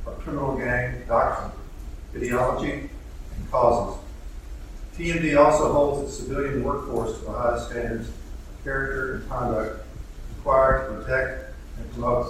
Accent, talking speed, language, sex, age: American, 125 wpm, English, male, 50-69